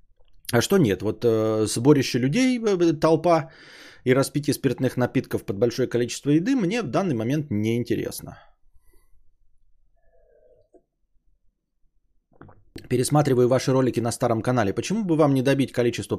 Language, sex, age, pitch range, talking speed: Bulgarian, male, 20-39, 105-145 Hz, 135 wpm